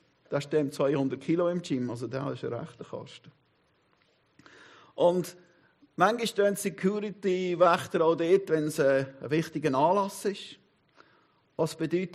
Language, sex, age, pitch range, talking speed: German, male, 50-69, 160-205 Hz, 130 wpm